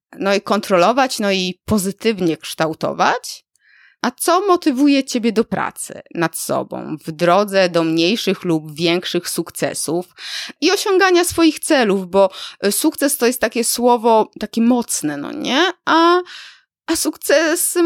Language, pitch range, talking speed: Polish, 180-295 Hz, 130 wpm